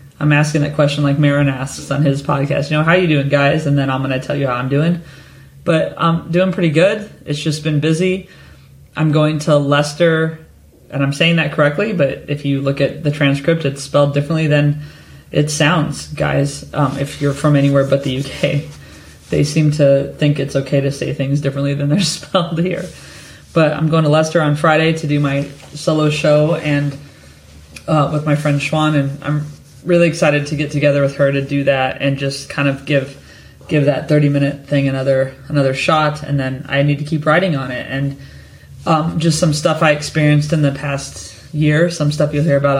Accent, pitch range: American, 140-155 Hz